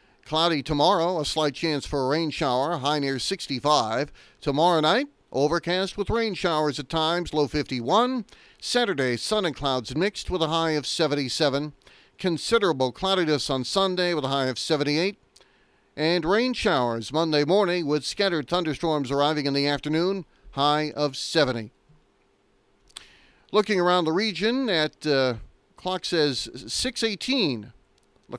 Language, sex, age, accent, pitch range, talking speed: English, male, 40-59, American, 145-180 Hz, 140 wpm